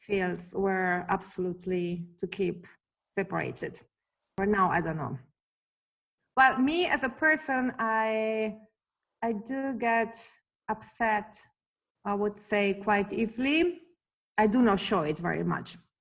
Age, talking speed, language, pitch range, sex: 30-49, 125 wpm, English, 180-220 Hz, female